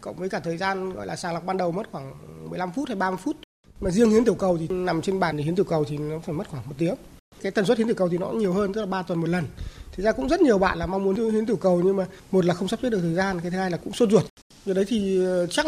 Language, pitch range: Vietnamese, 175-215 Hz